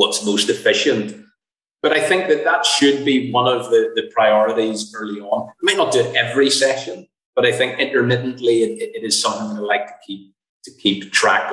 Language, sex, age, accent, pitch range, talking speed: English, male, 30-49, British, 110-140 Hz, 205 wpm